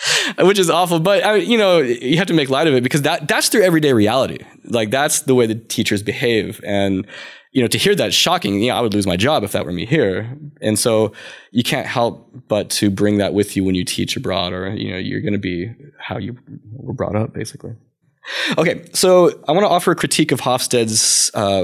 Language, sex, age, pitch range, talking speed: English, male, 20-39, 105-130 Hz, 240 wpm